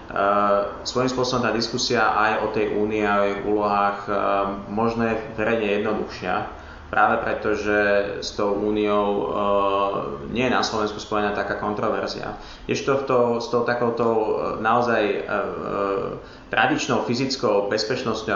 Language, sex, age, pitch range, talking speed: Slovak, male, 30-49, 100-115 Hz, 135 wpm